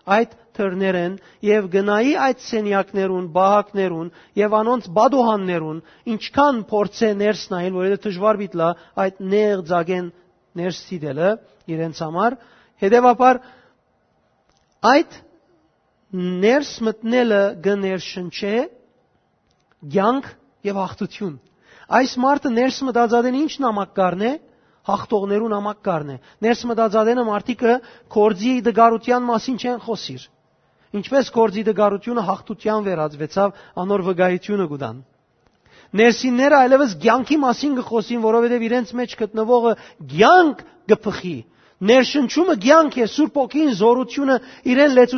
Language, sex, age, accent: English, male, 40-59, Turkish